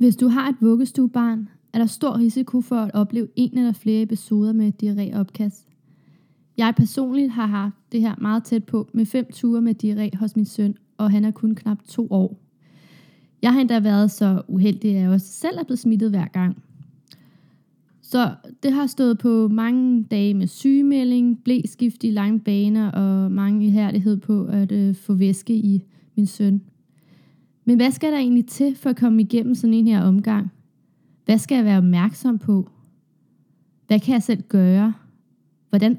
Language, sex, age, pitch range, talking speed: Danish, female, 20-39, 200-240 Hz, 175 wpm